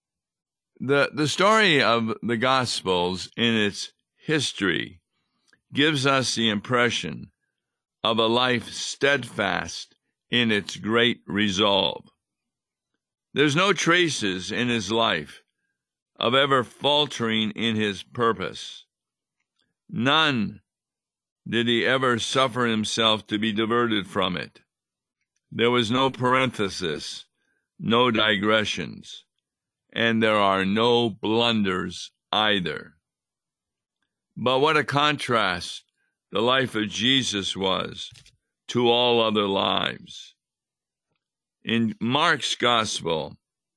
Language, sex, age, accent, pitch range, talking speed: English, male, 50-69, American, 105-130 Hz, 100 wpm